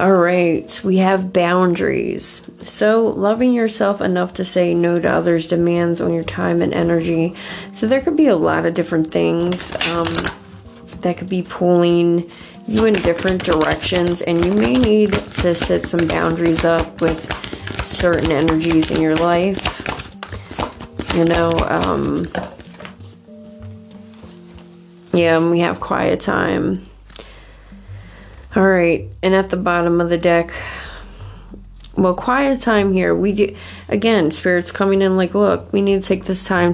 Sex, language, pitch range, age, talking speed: female, English, 165-185 Hz, 20-39, 140 wpm